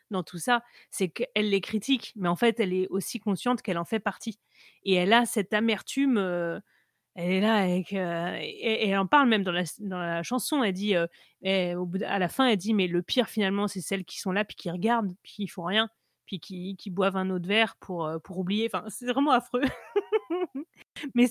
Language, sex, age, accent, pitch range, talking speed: French, female, 30-49, French, 185-230 Hz, 225 wpm